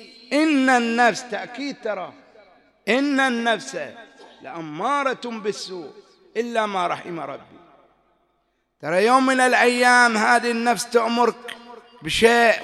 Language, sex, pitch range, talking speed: English, male, 140-230 Hz, 95 wpm